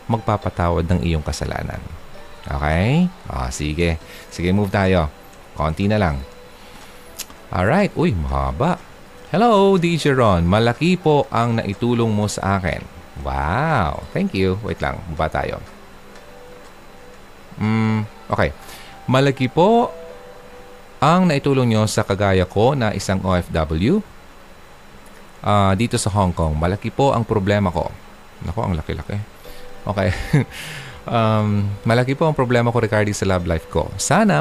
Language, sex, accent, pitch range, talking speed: Filipino, male, native, 85-120 Hz, 130 wpm